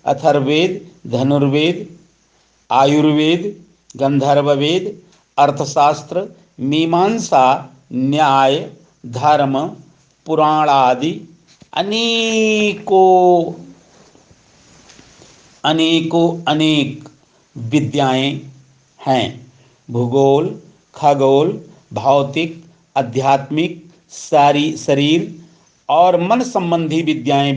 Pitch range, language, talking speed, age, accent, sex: 140-185 Hz, Hindi, 50 wpm, 60-79, native, male